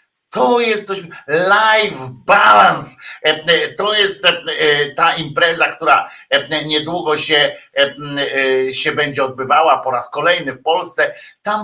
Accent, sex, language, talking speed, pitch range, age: native, male, Polish, 110 wpm, 165-210 Hz, 50-69